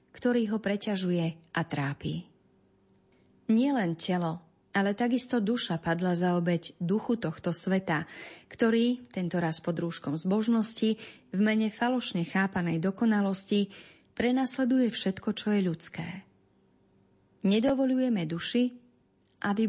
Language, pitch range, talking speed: Slovak, 170-230 Hz, 105 wpm